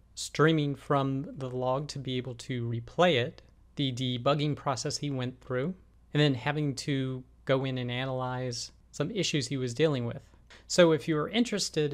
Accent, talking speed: American, 170 wpm